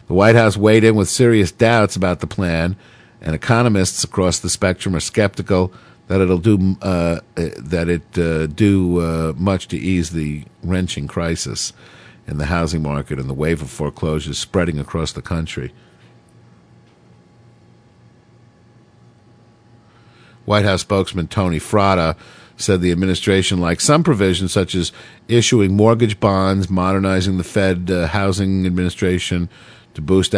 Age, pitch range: 50-69, 80-100 Hz